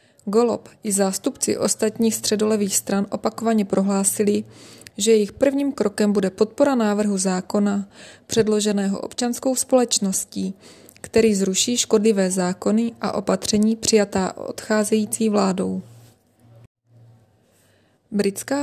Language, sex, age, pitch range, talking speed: Czech, female, 20-39, 195-220 Hz, 95 wpm